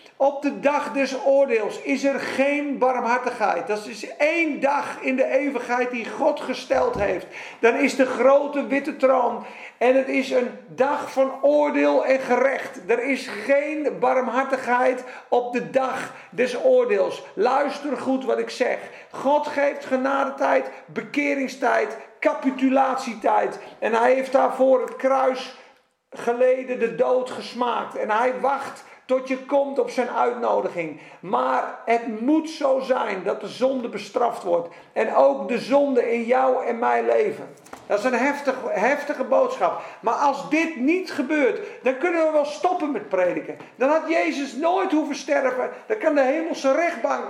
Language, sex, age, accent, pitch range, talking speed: Dutch, male, 50-69, Dutch, 255-290 Hz, 155 wpm